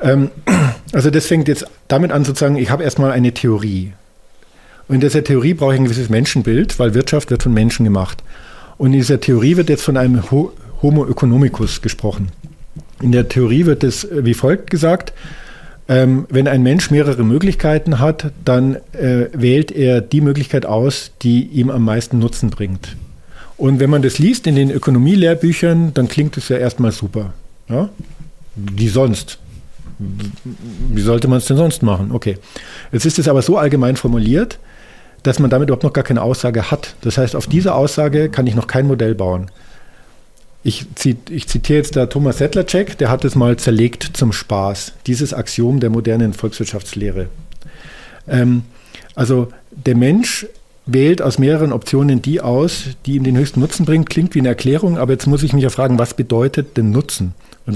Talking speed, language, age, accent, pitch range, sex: 175 wpm, German, 50-69, German, 120-145 Hz, male